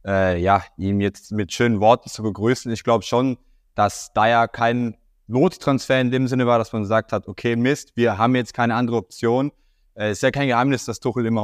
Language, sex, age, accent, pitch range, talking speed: German, male, 20-39, German, 105-120 Hz, 220 wpm